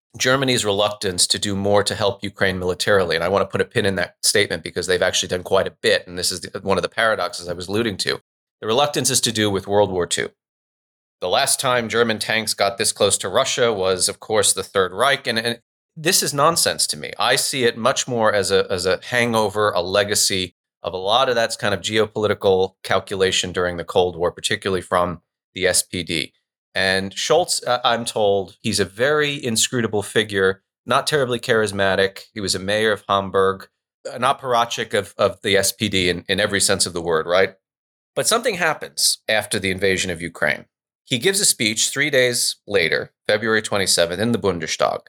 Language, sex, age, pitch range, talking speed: English, male, 30-49, 95-120 Hz, 200 wpm